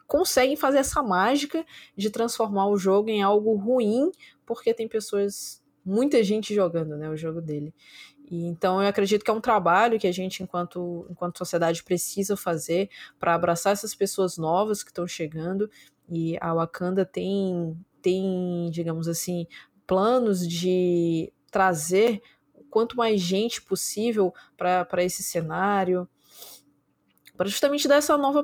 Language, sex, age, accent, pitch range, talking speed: Portuguese, female, 20-39, Brazilian, 180-220 Hz, 140 wpm